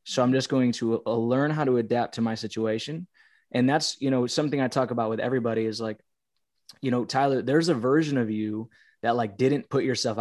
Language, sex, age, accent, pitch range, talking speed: English, male, 20-39, American, 115-130 Hz, 215 wpm